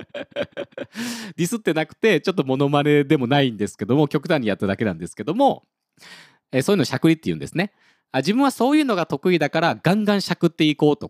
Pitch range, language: 135-205 Hz, Japanese